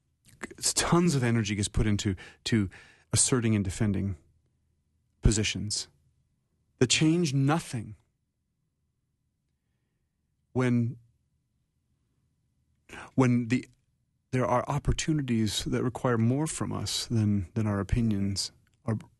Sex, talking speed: male, 95 wpm